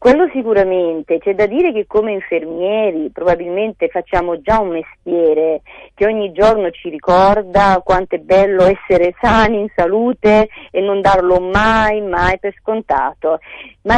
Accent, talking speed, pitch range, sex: native, 140 wpm, 180-250 Hz, female